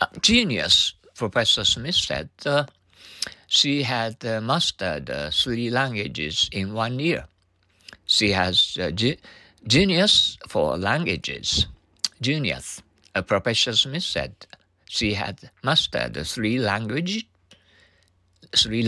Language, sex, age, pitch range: Japanese, male, 60-79, 90-125 Hz